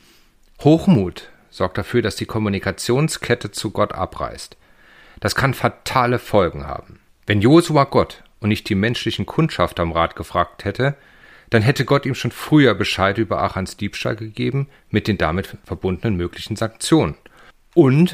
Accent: German